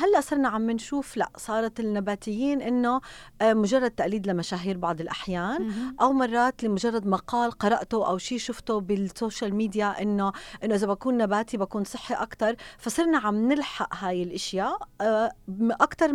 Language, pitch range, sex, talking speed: Arabic, 195-245 Hz, female, 135 wpm